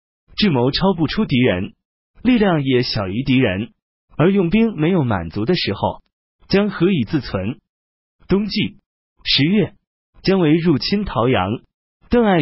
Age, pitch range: 30-49, 115-190 Hz